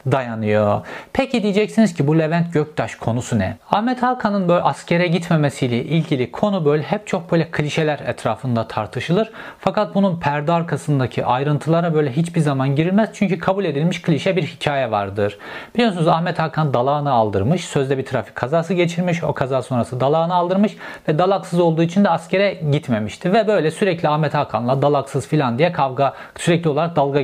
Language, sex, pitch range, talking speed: Turkish, male, 125-175 Hz, 160 wpm